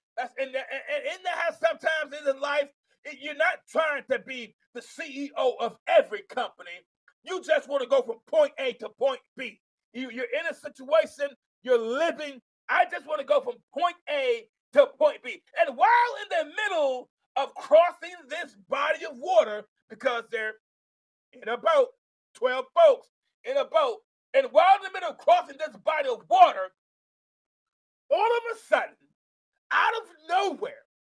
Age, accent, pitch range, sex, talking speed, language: 40-59, American, 270-375 Hz, male, 160 wpm, English